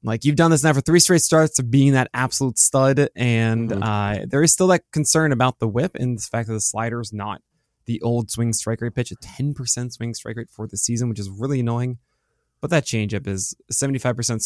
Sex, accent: male, American